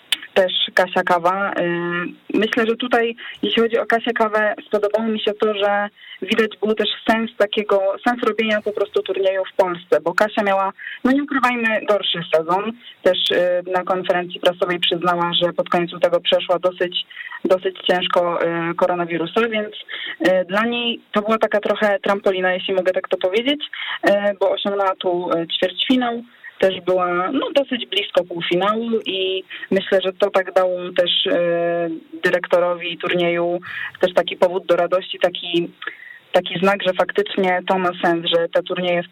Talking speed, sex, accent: 155 wpm, female, native